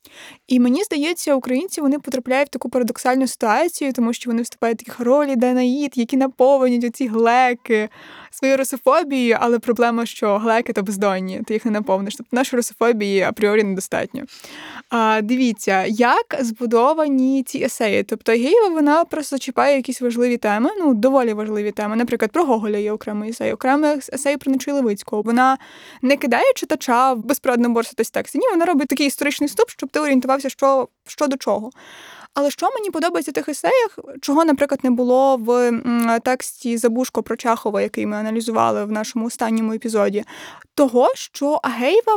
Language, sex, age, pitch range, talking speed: Ukrainian, female, 20-39, 235-290 Hz, 165 wpm